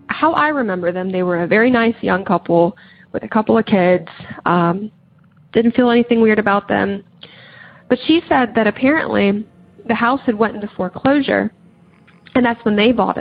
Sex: female